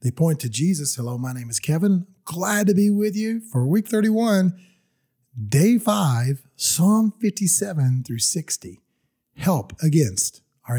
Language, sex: English, male